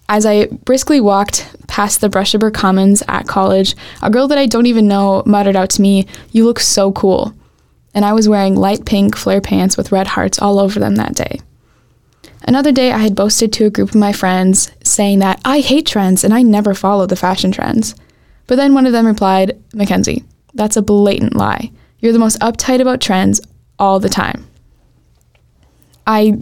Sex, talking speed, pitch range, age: female, 195 wpm, 200-225 Hz, 10-29